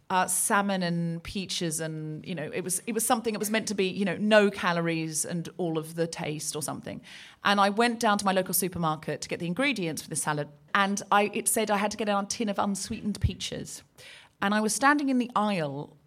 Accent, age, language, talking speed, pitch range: British, 40-59, English, 235 wpm, 170-230 Hz